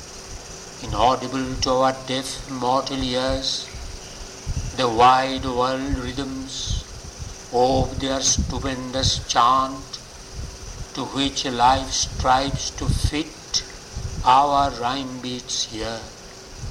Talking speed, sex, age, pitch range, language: 85 wpm, male, 60-79, 100-135 Hz, English